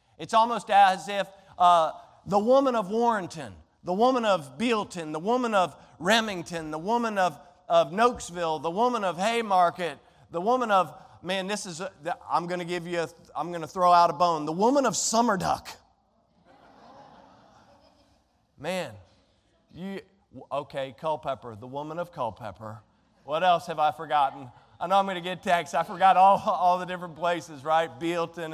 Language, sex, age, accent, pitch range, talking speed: English, male, 40-59, American, 165-205 Hz, 170 wpm